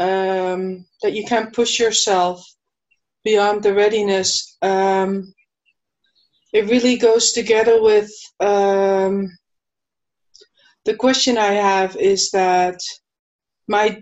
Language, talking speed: English, 100 wpm